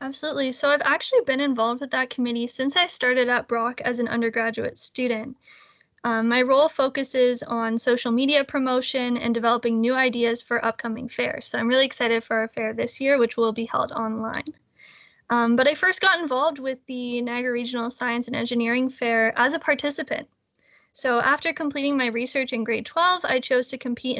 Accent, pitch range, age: American, 235-280 Hz, 10-29